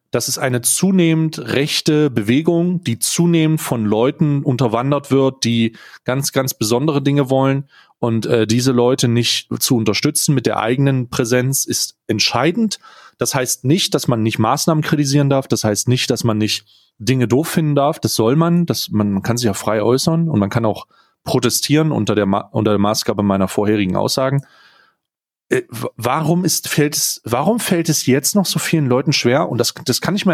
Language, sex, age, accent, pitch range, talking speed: German, male, 30-49, German, 115-150 Hz, 180 wpm